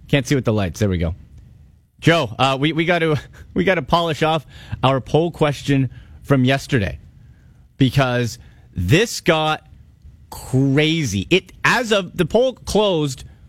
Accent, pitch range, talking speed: American, 125-165 Hz, 140 wpm